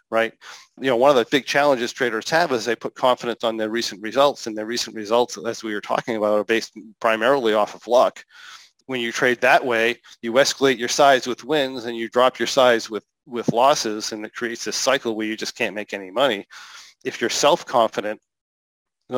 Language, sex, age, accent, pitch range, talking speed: English, male, 40-59, American, 110-130 Hz, 215 wpm